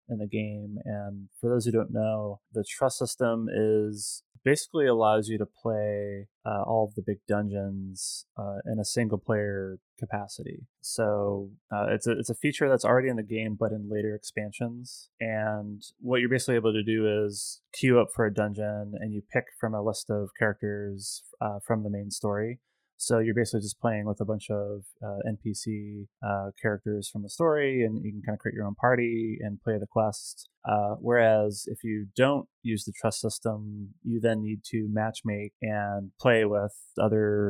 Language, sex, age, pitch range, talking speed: English, male, 20-39, 105-115 Hz, 190 wpm